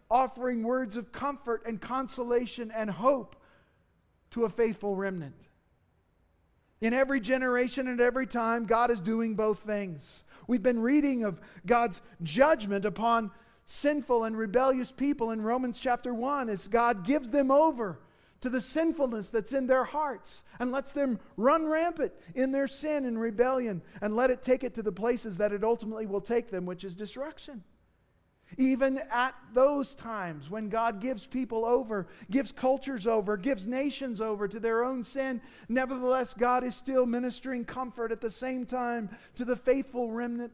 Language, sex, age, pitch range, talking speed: English, male, 40-59, 215-260 Hz, 165 wpm